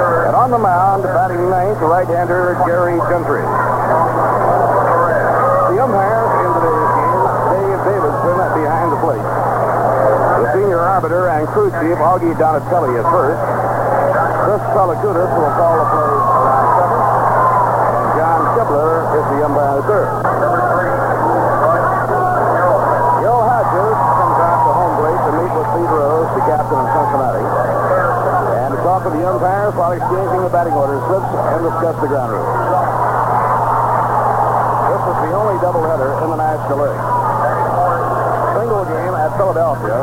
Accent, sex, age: American, male, 60-79